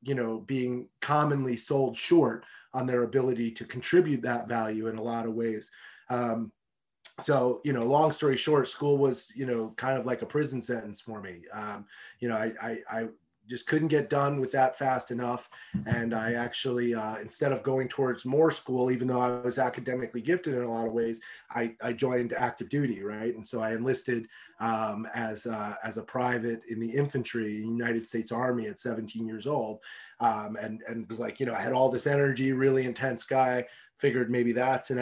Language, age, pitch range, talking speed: English, 30-49, 115-135 Hz, 200 wpm